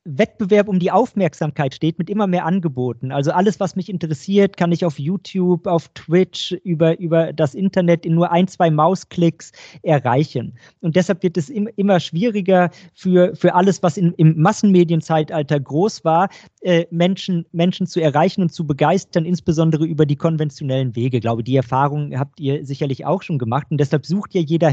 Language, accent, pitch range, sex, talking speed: German, German, 150-180 Hz, male, 180 wpm